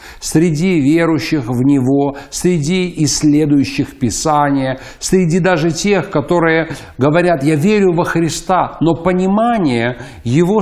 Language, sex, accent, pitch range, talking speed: Russian, male, native, 135-180 Hz, 105 wpm